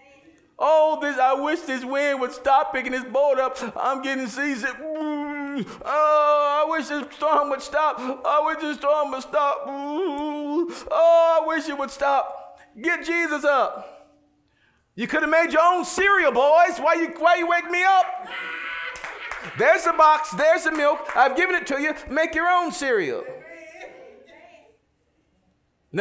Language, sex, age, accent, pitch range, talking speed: English, male, 50-69, American, 195-305 Hz, 160 wpm